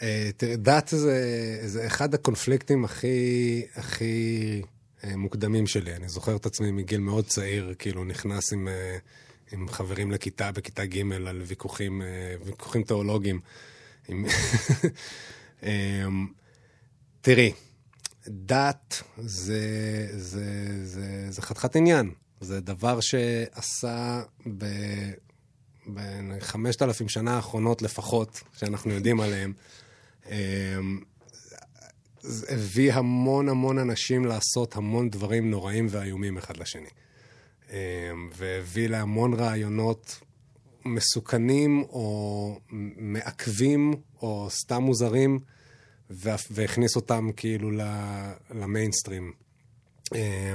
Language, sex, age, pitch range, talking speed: Hebrew, male, 20-39, 100-120 Hz, 90 wpm